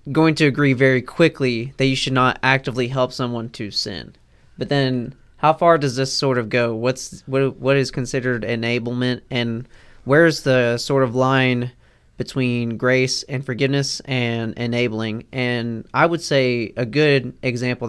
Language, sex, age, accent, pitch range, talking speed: English, male, 20-39, American, 120-140 Hz, 160 wpm